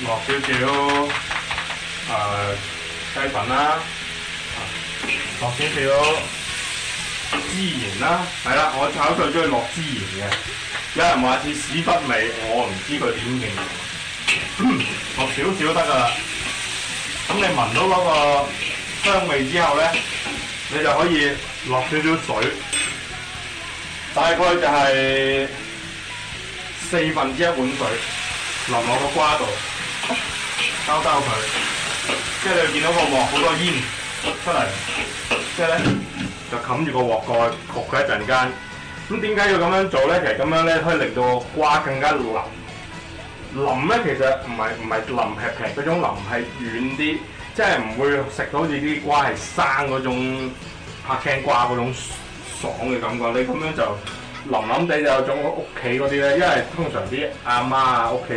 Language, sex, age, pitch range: Chinese, male, 20-39, 120-150 Hz